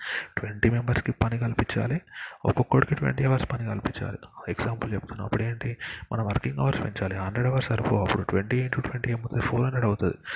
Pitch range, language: 100-115 Hz, Telugu